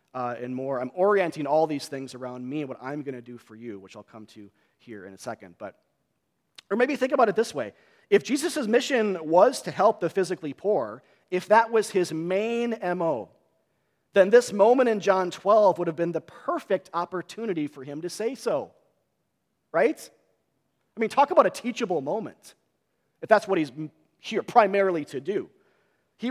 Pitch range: 145-210 Hz